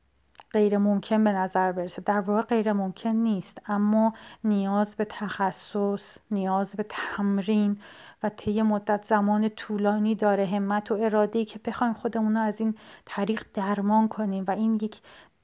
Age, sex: 30-49, female